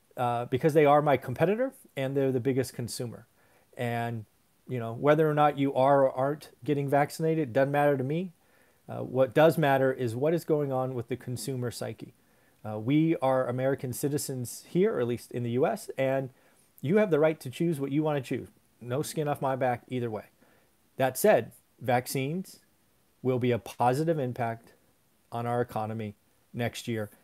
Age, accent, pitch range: 40-59, American, 125-150 Hz